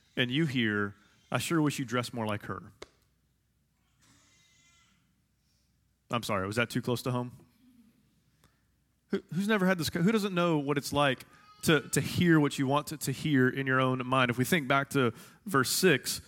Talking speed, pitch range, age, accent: 185 wpm, 115-140 Hz, 30-49, American